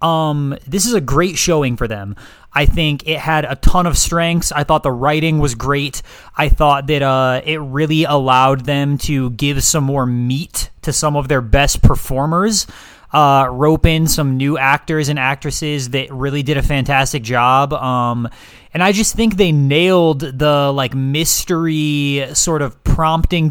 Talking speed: 175 wpm